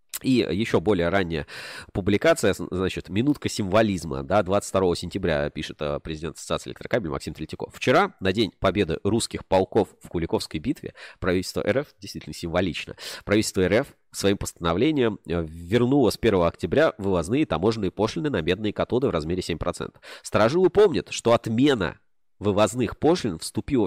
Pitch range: 90-120 Hz